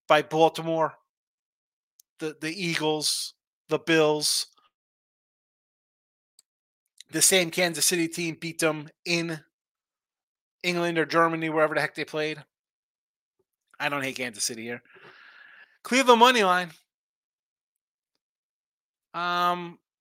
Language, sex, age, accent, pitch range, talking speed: English, male, 30-49, American, 150-175 Hz, 100 wpm